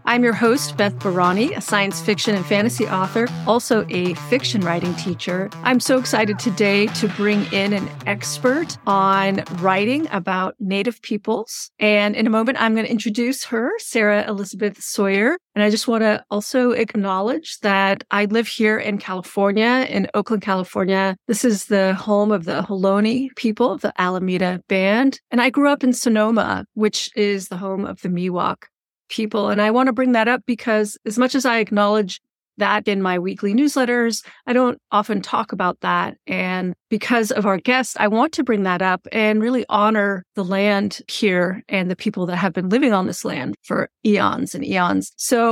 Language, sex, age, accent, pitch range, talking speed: English, female, 40-59, American, 195-245 Hz, 185 wpm